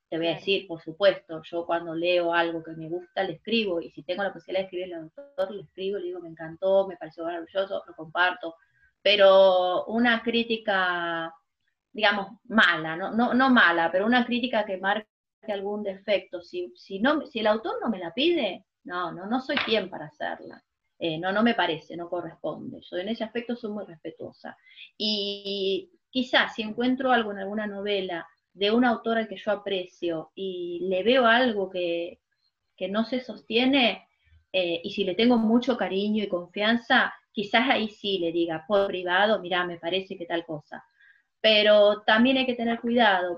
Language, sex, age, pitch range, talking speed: Spanish, female, 30-49, 180-230 Hz, 185 wpm